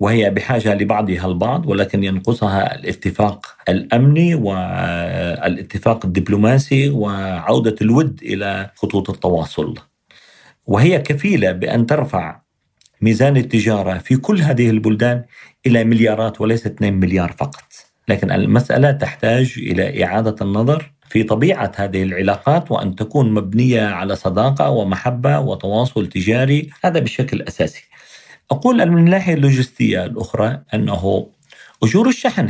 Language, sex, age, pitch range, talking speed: Arabic, male, 40-59, 105-140 Hz, 110 wpm